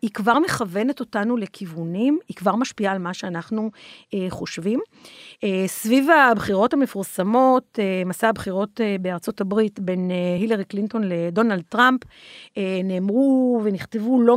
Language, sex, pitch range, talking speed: Hebrew, female, 195-245 Hz, 140 wpm